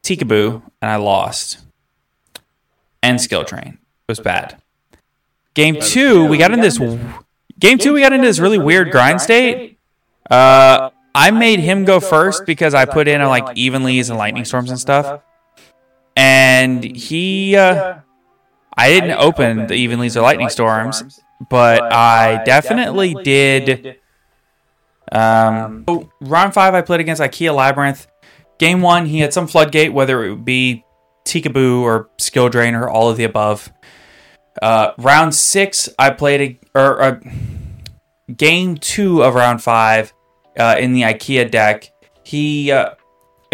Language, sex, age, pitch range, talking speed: English, male, 20-39, 115-160 Hz, 145 wpm